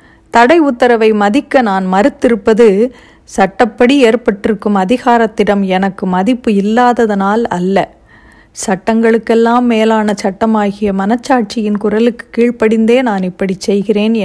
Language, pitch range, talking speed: Tamil, 200-245 Hz, 90 wpm